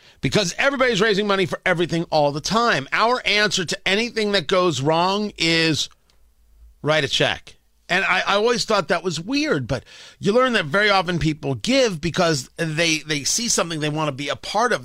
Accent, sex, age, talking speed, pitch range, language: American, male, 40-59, 195 wpm, 140-205 Hz, English